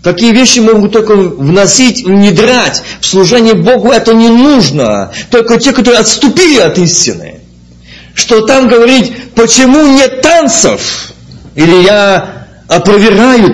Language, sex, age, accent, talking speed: Russian, male, 50-69, native, 120 wpm